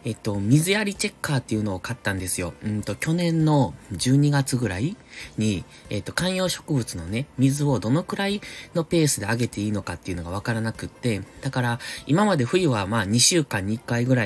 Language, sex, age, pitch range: Japanese, male, 20-39, 105-145 Hz